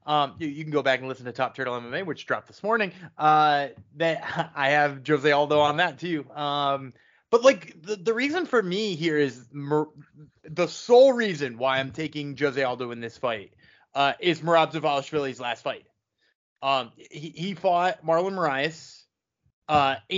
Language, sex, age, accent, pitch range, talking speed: English, male, 20-39, American, 140-180 Hz, 175 wpm